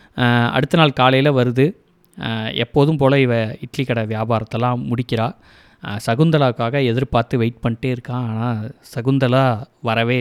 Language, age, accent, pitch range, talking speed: Tamil, 20-39, native, 120-140 Hz, 110 wpm